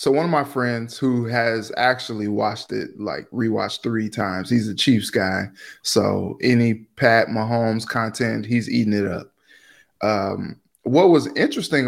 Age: 20-39